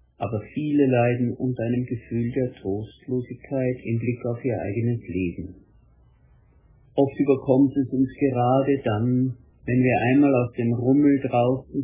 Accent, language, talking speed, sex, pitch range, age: German, German, 135 wpm, male, 110-135 Hz, 60-79